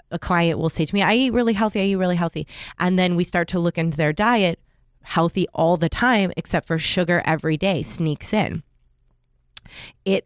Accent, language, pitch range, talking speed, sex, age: American, English, 150-175 Hz, 205 wpm, female, 20-39